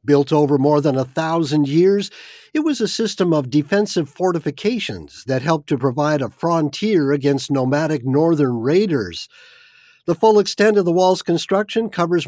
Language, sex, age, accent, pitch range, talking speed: English, male, 50-69, American, 135-180 Hz, 155 wpm